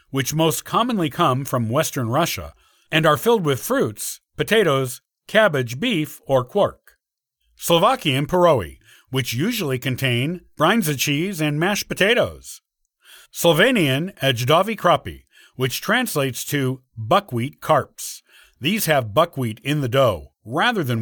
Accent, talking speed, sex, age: American, 125 wpm, male, 50-69